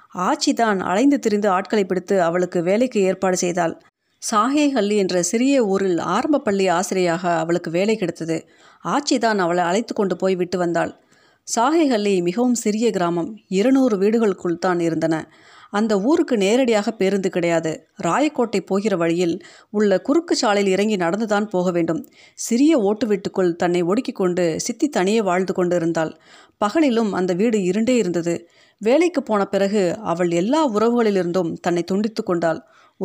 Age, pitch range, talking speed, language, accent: 30-49, 180-235 Hz, 130 wpm, Tamil, native